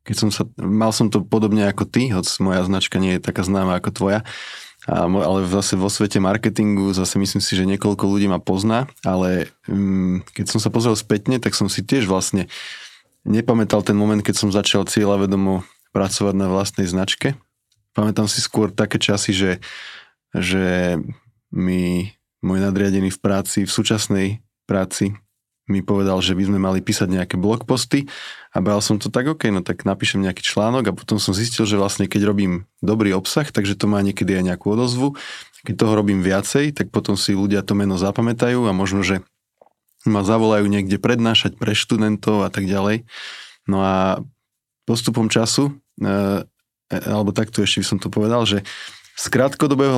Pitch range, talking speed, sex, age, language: 95-110 Hz, 175 wpm, male, 20-39, Slovak